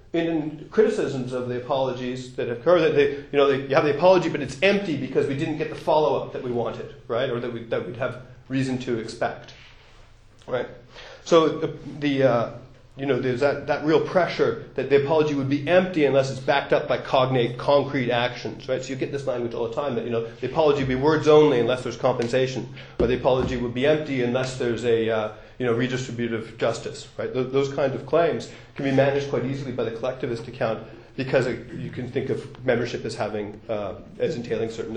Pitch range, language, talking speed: 120-145 Hz, English, 225 wpm